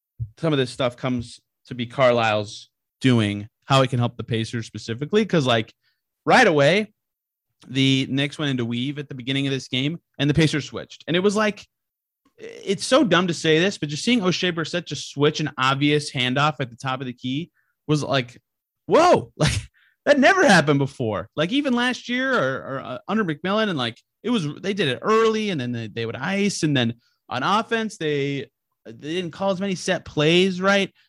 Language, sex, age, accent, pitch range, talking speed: English, male, 30-49, American, 120-175 Hz, 205 wpm